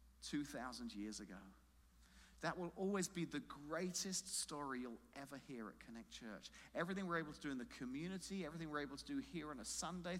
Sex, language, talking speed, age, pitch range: male, English, 195 wpm, 40-59, 145-205 Hz